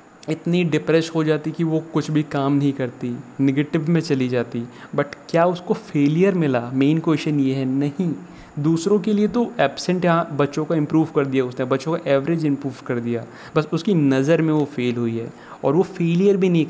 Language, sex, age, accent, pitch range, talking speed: Hindi, male, 30-49, native, 130-160 Hz, 200 wpm